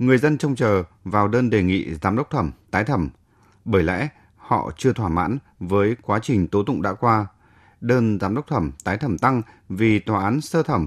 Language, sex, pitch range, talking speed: Vietnamese, male, 100-125 Hz, 210 wpm